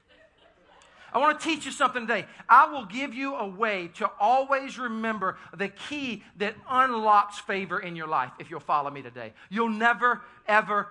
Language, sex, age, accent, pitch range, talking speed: English, male, 40-59, American, 205-305 Hz, 175 wpm